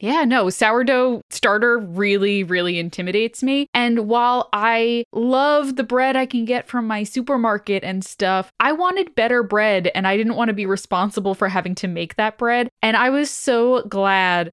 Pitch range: 185-235 Hz